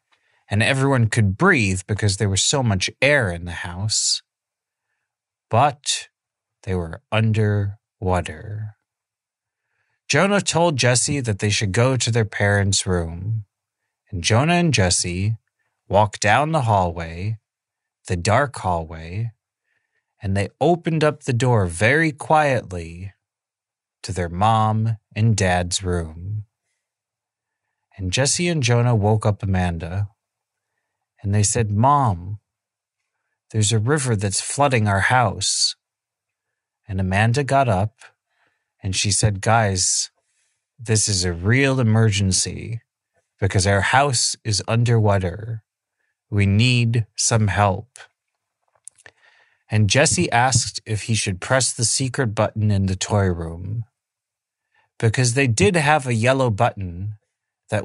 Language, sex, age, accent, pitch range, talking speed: English, male, 30-49, American, 100-120 Hz, 120 wpm